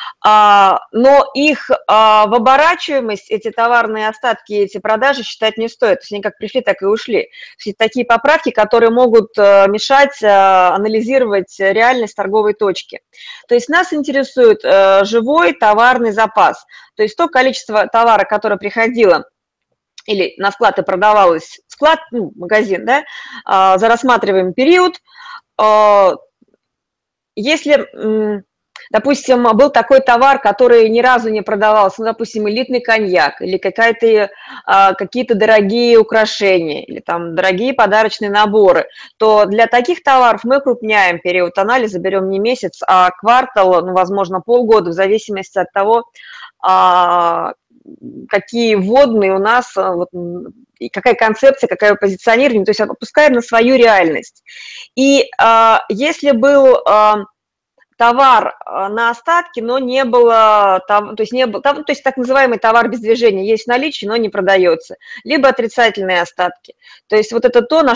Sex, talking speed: female, 130 wpm